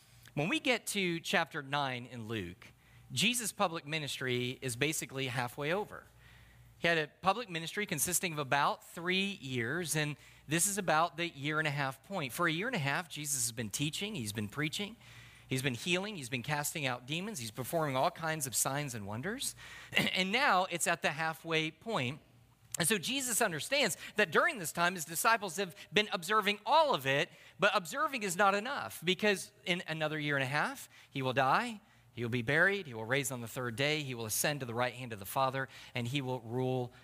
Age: 40-59